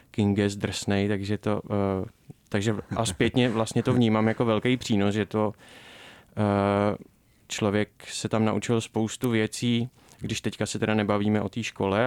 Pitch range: 100-110 Hz